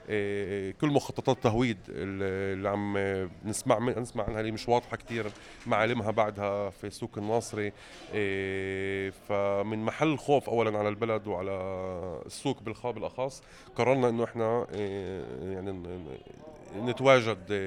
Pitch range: 100-120 Hz